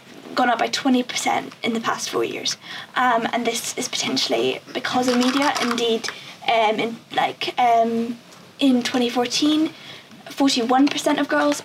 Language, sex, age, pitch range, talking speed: English, female, 20-39, 230-275 Hz, 140 wpm